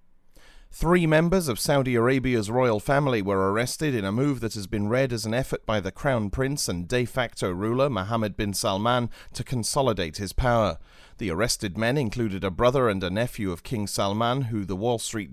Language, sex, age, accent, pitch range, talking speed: English, male, 30-49, British, 100-130 Hz, 195 wpm